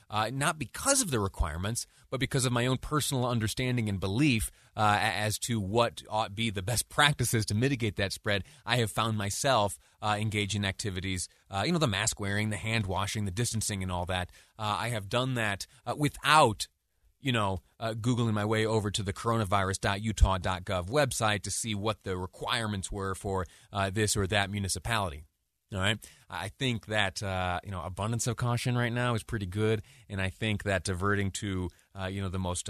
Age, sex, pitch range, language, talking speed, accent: 30-49, male, 95-115 Hz, English, 195 wpm, American